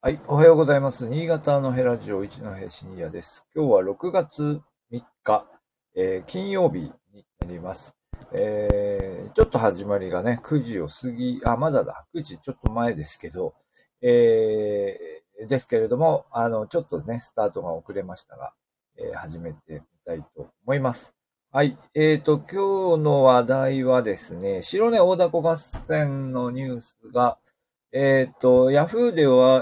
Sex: male